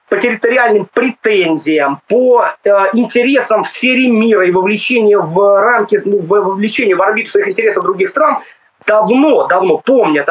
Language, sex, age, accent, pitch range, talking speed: Russian, male, 20-39, native, 215-285 Hz, 135 wpm